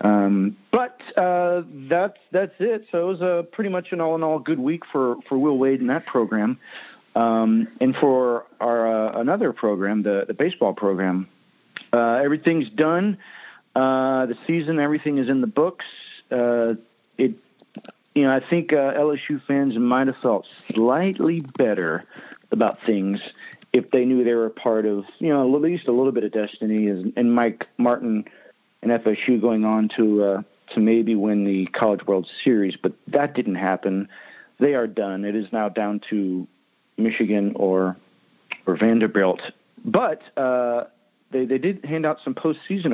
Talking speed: 170 wpm